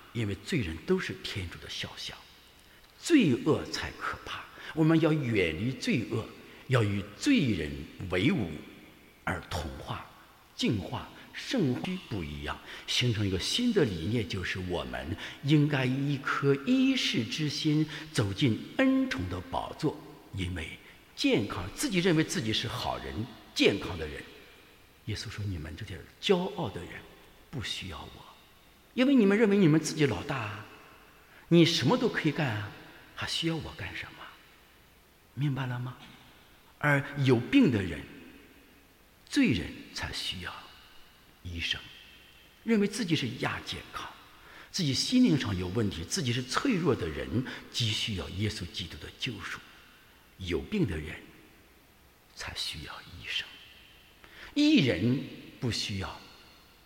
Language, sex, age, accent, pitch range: English, male, 60-79, Chinese, 100-165 Hz